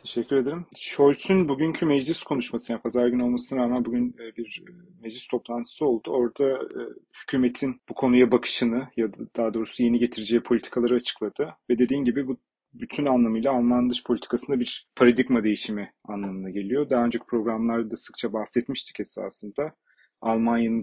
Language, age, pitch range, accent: Turkish, 40-59, 110-135 Hz, native